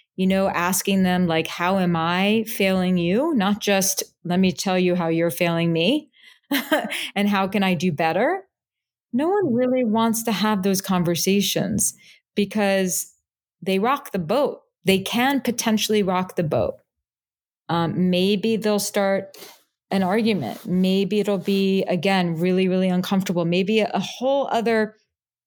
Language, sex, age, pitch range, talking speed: English, female, 30-49, 185-215 Hz, 150 wpm